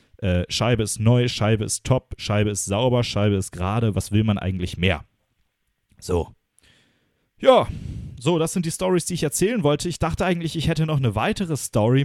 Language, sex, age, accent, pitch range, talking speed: German, male, 30-49, German, 110-165 Hz, 190 wpm